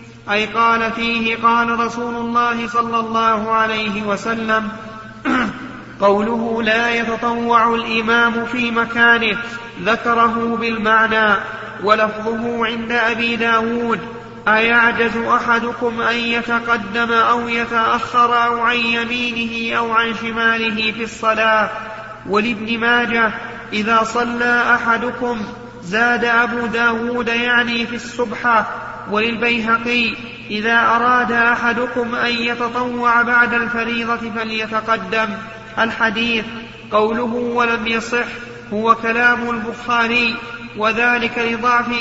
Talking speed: 90 wpm